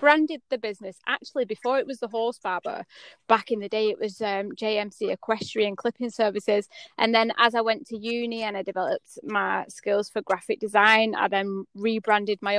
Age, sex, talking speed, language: 20-39, female, 190 wpm, English